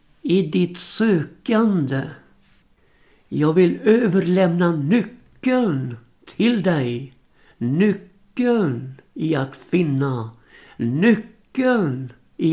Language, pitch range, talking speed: Swedish, 140-200 Hz, 70 wpm